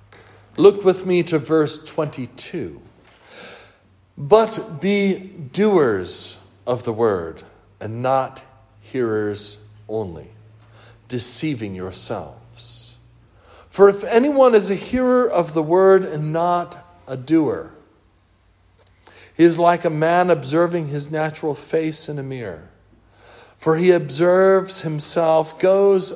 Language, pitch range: English, 110-185 Hz